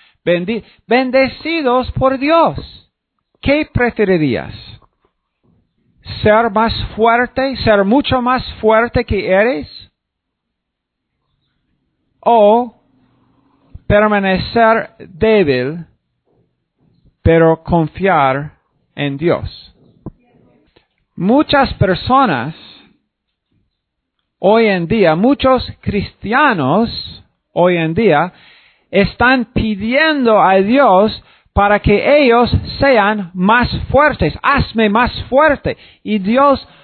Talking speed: 75 wpm